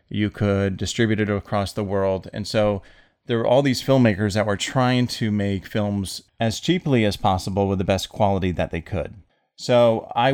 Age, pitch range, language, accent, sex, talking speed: 30-49, 95-115 Hz, English, American, male, 190 wpm